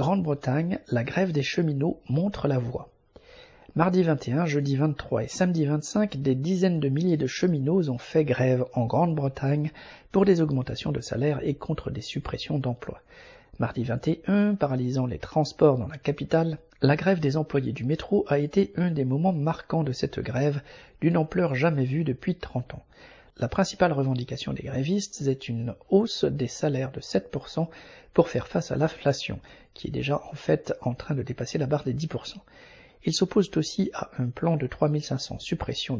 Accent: French